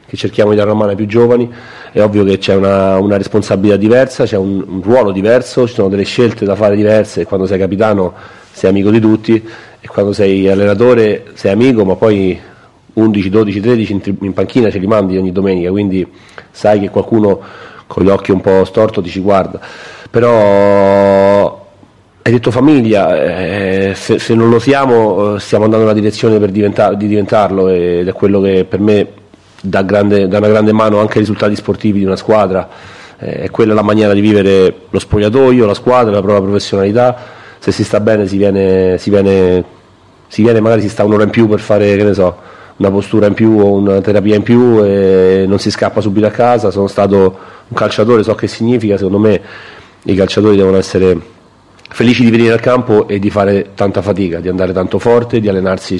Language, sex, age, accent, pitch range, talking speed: Italian, male, 40-59, native, 95-110 Hz, 200 wpm